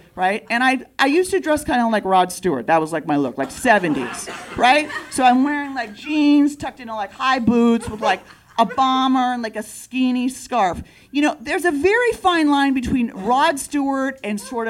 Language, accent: English, American